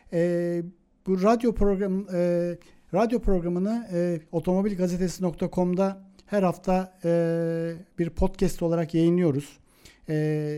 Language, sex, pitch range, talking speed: Turkish, male, 150-180 Hz, 100 wpm